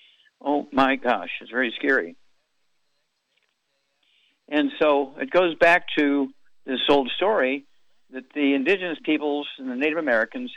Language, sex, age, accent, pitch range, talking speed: English, male, 60-79, American, 130-160 Hz, 130 wpm